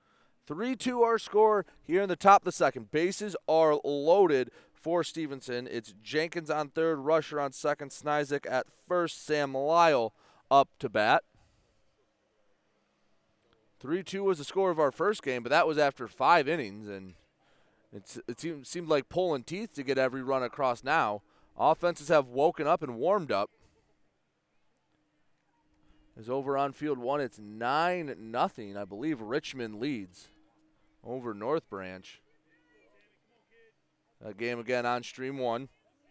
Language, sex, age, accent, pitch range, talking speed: English, male, 30-49, American, 120-160 Hz, 145 wpm